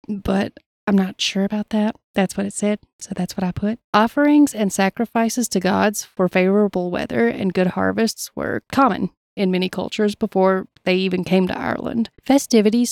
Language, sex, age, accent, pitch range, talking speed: English, female, 30-49, American, 180-220 Hz, 175 wpm